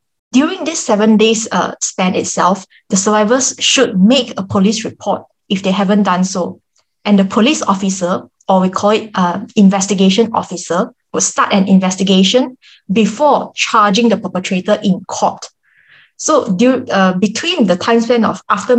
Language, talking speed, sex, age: English, 155 wpm, female, 20-39